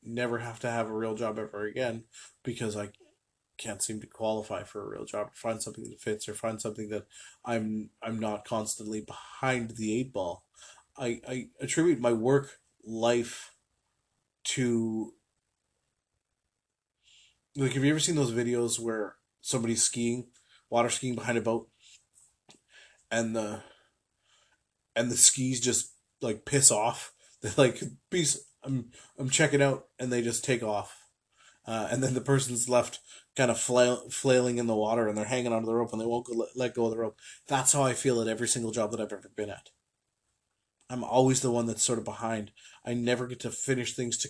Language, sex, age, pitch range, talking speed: English, male, 20-39, 115-125 Hz, 185 wpm